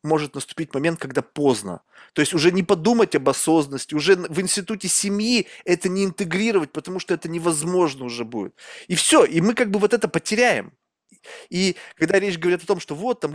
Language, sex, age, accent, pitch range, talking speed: Russian, male, 20-39, native, 150-210 Hz, 195 wpm